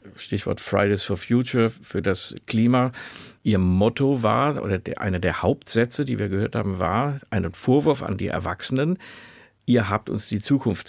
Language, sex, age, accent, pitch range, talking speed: German, male, 50-69, German, 95-115 Hz, 160 wpm